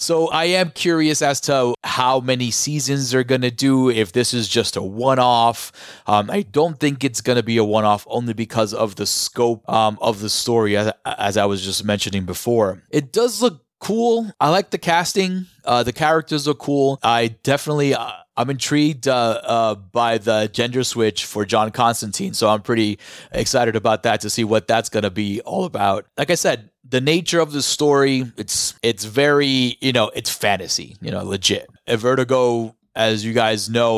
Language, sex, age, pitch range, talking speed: English, male, 30-49, 105-130 Hz, 190 wpm